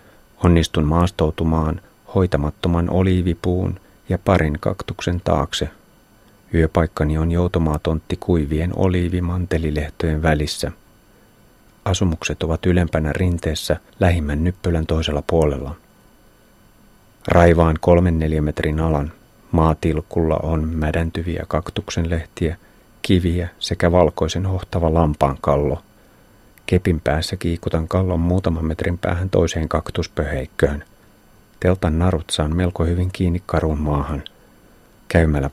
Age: 30-49